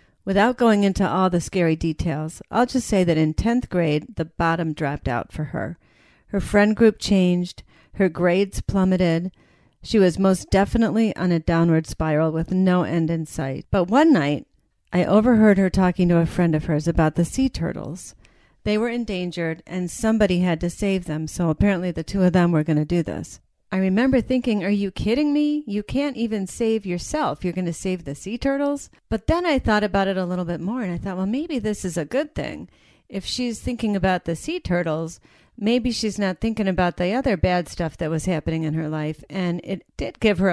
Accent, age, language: American, 40-59, English